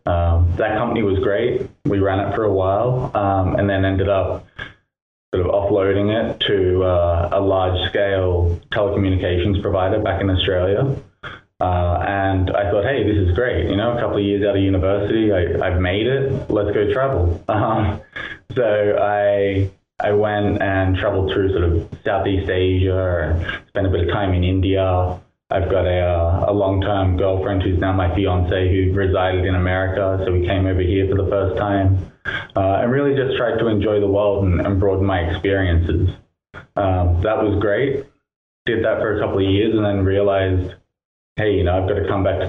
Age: 20-39